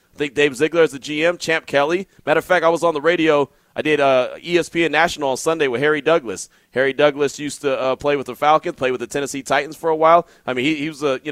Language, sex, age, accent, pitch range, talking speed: English, male, 30-49, American, 140-165 Hz, 270 wpm